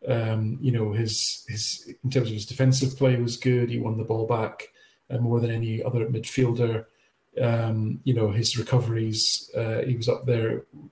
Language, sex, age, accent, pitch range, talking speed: English, male, 40-59, British, 115-135 Hz, 185 wpm